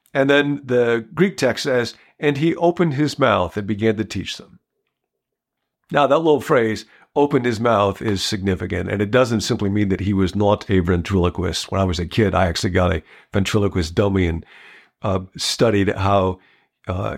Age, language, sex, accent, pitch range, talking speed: 50-69, English, male, American, 95-120 Hz, 180 wpm